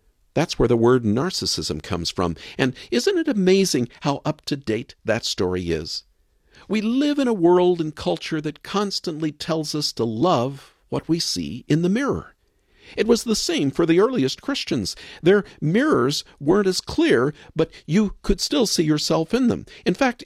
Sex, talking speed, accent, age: male, 170 wpm, American, 50-69